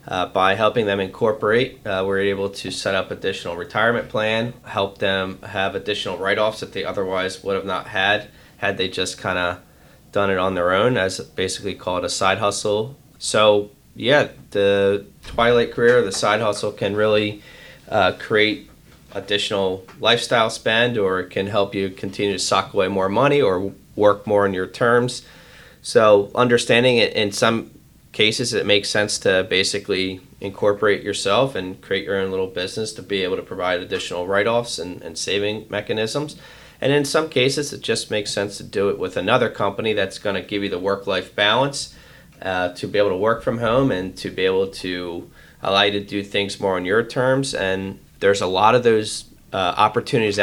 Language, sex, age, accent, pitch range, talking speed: English, male, 20-39, American, 95-110 Hz, 185 wpm